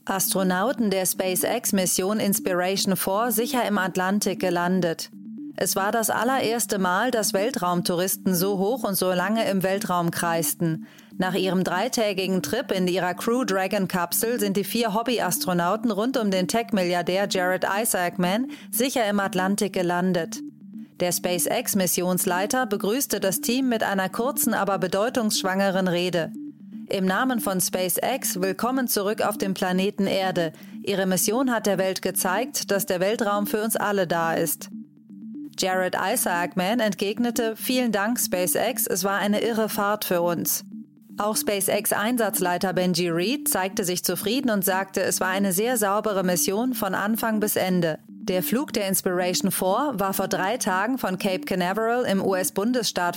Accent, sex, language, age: German, female, German, 30-49